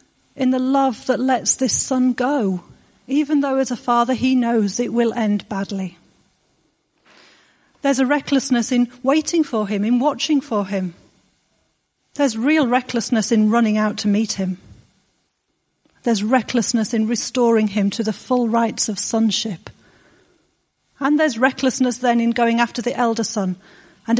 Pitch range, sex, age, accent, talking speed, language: 210-250 Hz, female, 40-59, British, 150 wpm, English